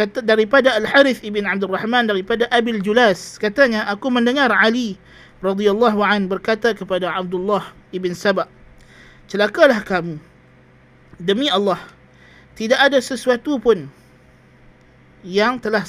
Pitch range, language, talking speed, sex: 180-225 Hz, Malay, 110 wpm, male